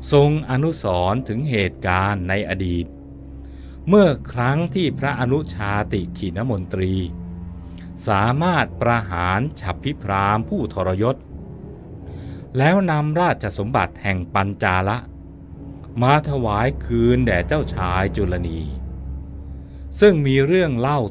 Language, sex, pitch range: Thai, male, 85-125 Hz